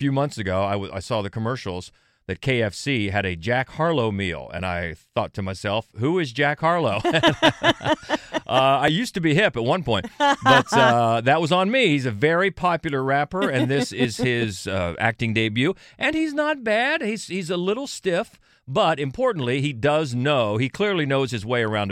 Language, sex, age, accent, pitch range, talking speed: English, male, 40-59, American, 100-155 Hz, 195 wpm